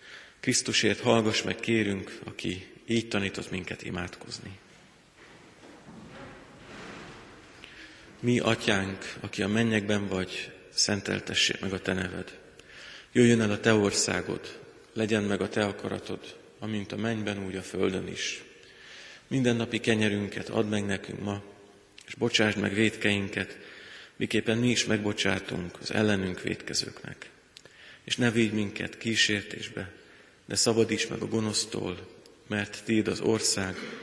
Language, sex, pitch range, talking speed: Hungarian, male, 100-115 Hz, 120 wpm